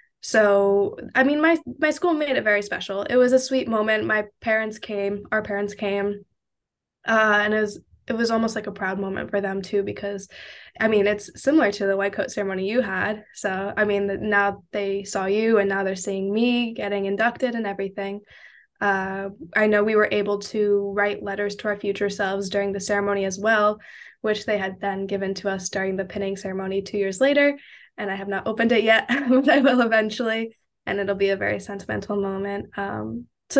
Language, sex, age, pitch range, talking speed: English, female, 10-29, 200-225 Hz, 205 wpm